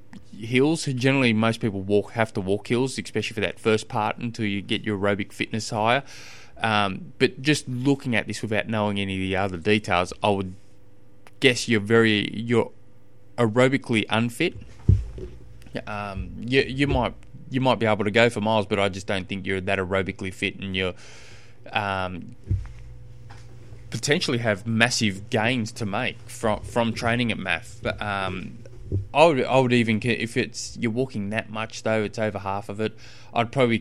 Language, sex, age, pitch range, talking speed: English, male, 20-39, 105-120 Hz, 175 wpm